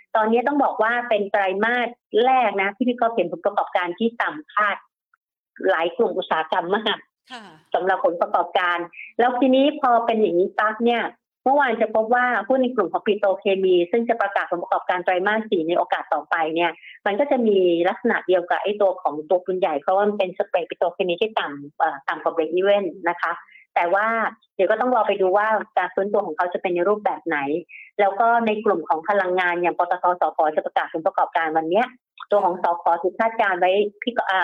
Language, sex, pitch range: Thai, female, 180-220 Hz